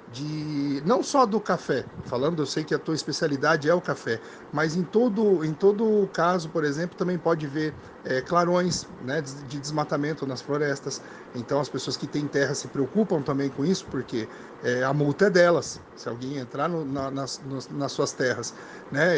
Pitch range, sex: 140-170 Hz, male